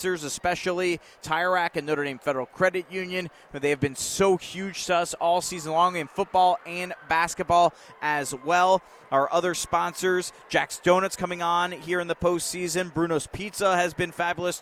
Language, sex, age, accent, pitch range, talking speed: English, male, 30-49, American, 145-180 Hz, 165 wpm